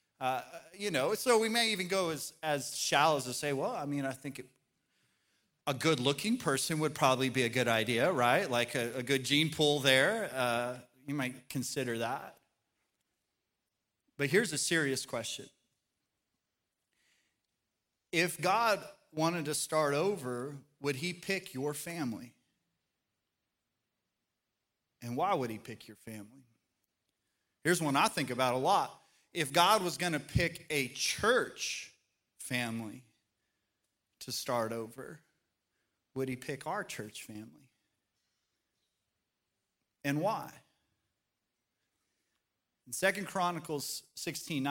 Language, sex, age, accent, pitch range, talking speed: English, male, 30-49, American, 125-155 Hz, 130 wpm